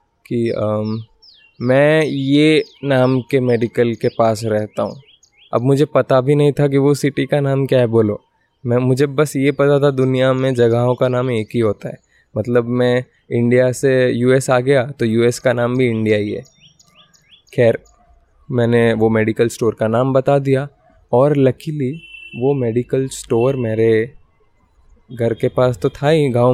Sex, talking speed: male, 150 wpm